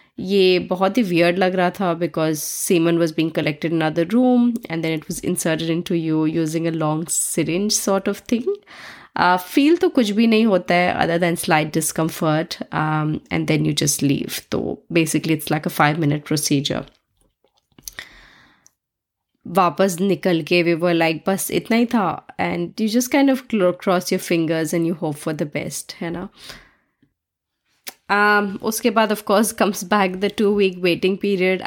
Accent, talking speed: Indian, 160 wpm